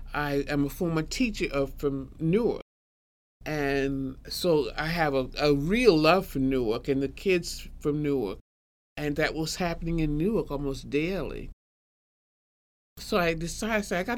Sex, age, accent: male, 50-69, American